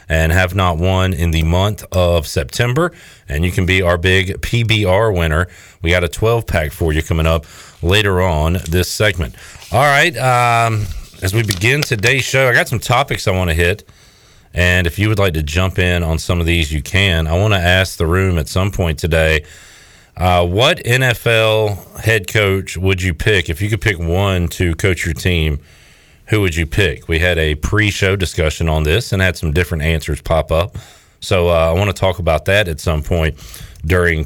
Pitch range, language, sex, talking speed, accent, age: 85-105 Hz, English, male, 205 wpm, American, 40-59